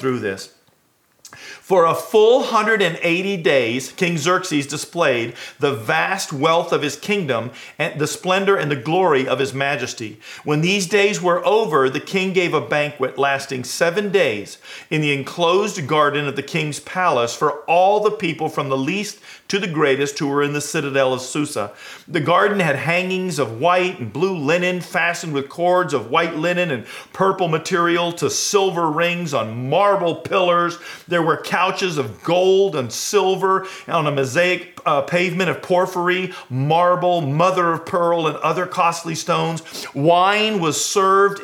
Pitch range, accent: 150-185 Hz, American